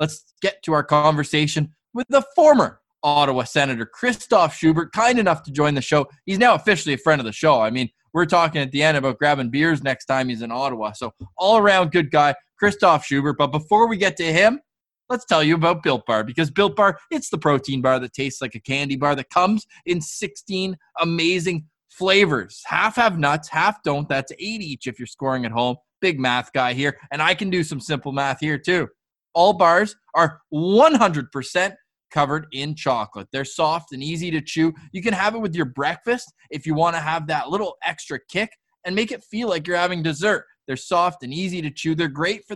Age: 20-39